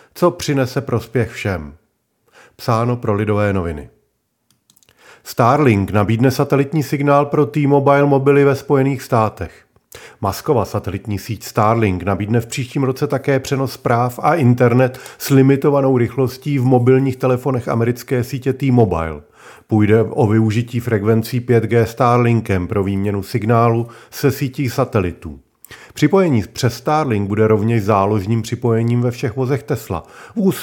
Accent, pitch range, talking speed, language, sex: native, 110-135 Hz, 125 wpm, Czech, male